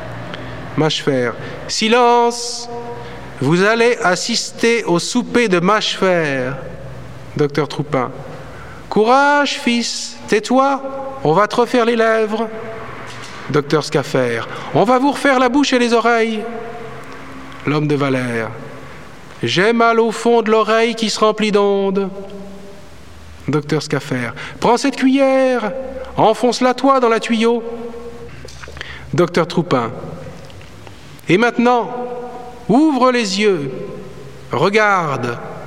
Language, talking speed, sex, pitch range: English, 105 wpm, male, 150-240 Hz